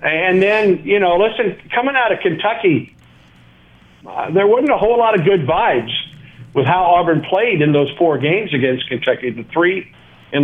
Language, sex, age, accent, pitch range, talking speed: English, male, 50-69, American, 130-170 Hz, 180 wpm